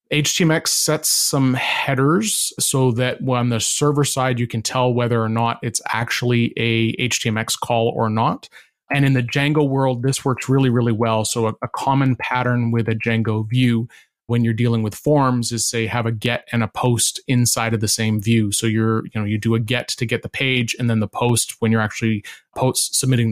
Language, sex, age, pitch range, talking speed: English, male, 30-49, 115-130 Hz, 205 wpm